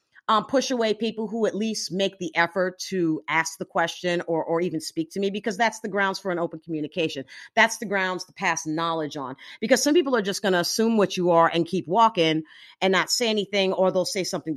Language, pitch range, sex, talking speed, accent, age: English, 160-210 Hz, female, 235 wpm, American, 40-59